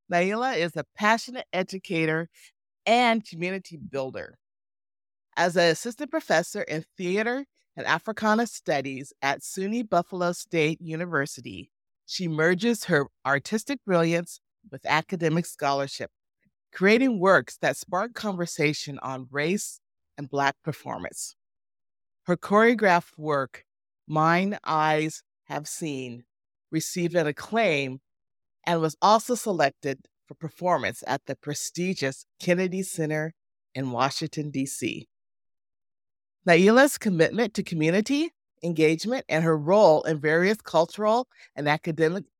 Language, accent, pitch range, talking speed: English, American, 140-185 Hz, 110 wpm